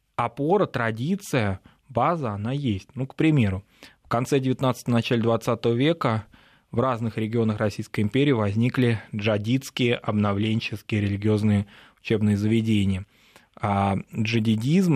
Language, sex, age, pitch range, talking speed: Russian, male, 20-39, 105-125 Hz, 110 wpm